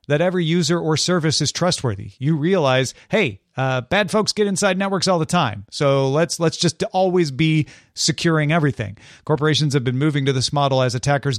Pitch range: 135-170 Hz